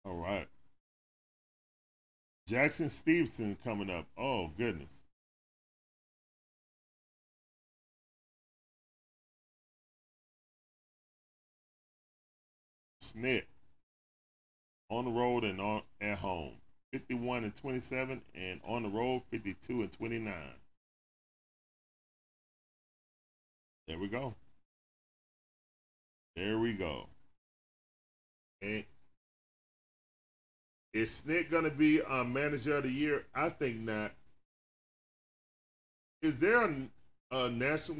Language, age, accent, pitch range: English, 10-29, American, 105-135 Hz